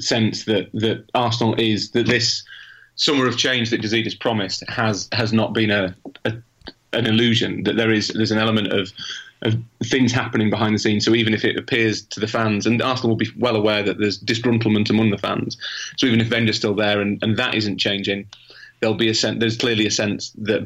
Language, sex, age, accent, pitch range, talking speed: English, male, 30-49, British, 105-115 Hz, 220 wpm